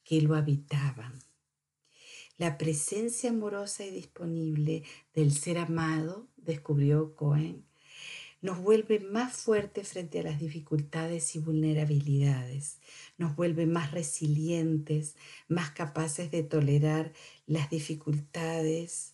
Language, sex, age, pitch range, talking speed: Spanish, female, 50-69, 150-180 Hz, 100 wpm